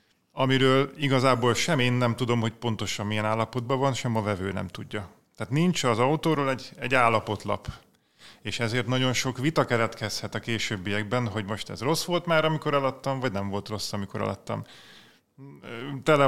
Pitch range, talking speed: 105-135 Hz, 170 wpm